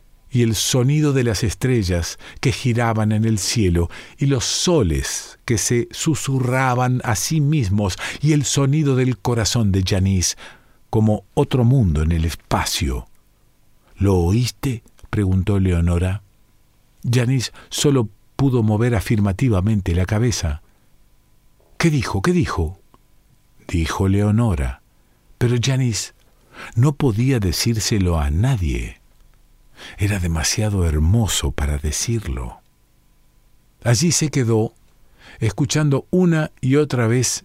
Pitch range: 100-125 Hz